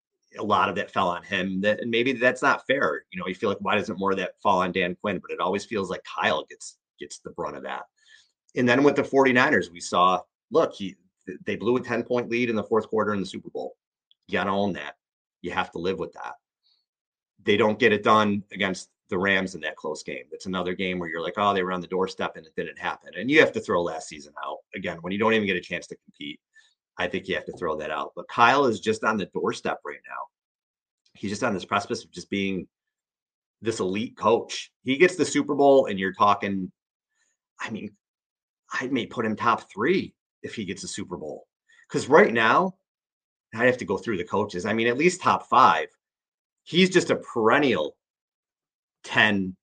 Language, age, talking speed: English, 30-49, 225 wpm